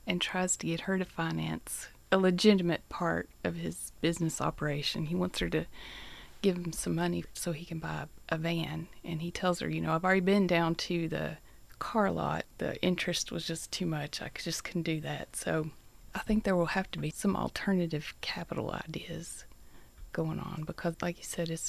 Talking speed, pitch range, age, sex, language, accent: 200 wpm, 160-185 Hz, 30-49, female, English, American